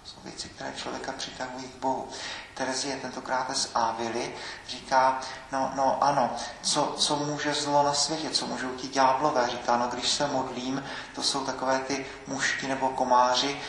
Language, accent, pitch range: Czech, native, 120-135 Hz